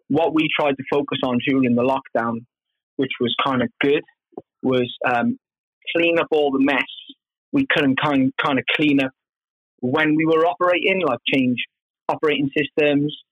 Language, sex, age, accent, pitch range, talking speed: English, male, 20-39, British, 130-150 Hz, 160 wpm